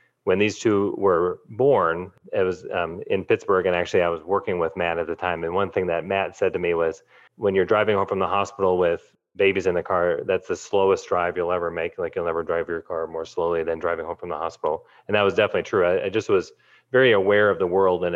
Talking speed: 255 wpm